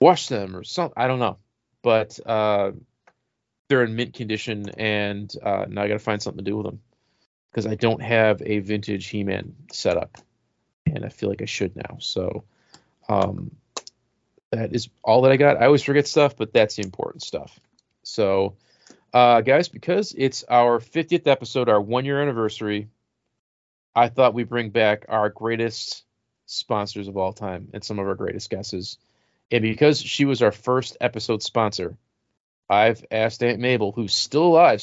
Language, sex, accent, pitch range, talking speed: English, male, American, 105-125 Hz, 175 wpm